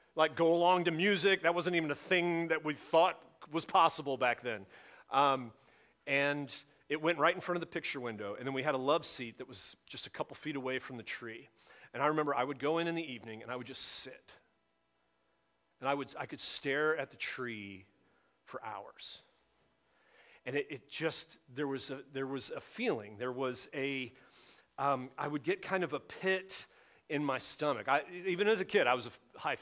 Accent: American